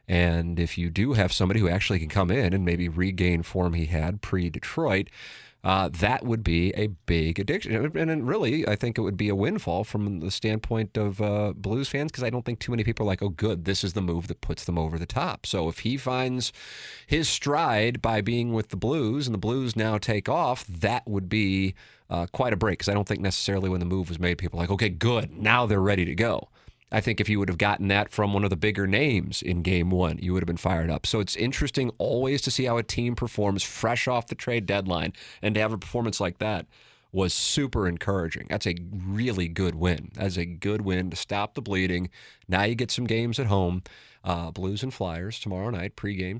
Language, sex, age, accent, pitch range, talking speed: English, male, 30-49, American, 90-115 Hz, 235 wpm